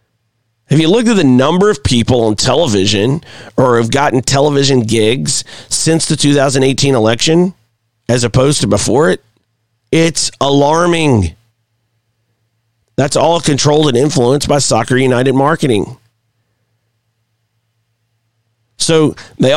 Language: English